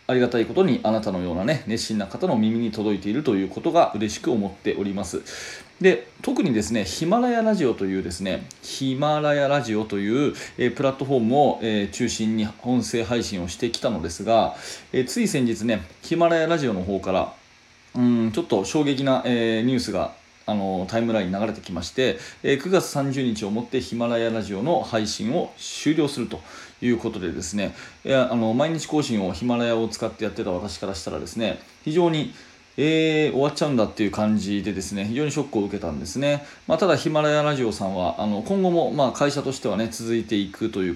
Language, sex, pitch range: Japanese, male, 105-145 Hz